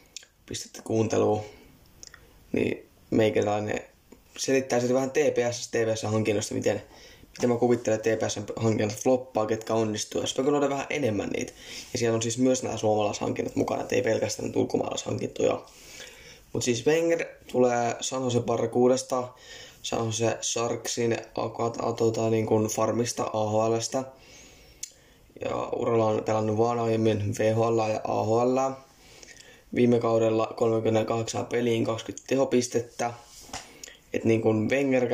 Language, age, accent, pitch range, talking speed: Finnish, 20-39, native, 110-125 Hz, 105 wpm